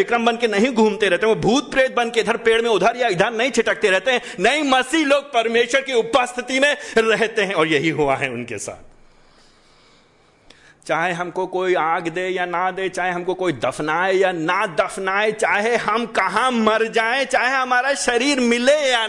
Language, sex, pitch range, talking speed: Hindi, male, 225-295 Hz, 150 wpm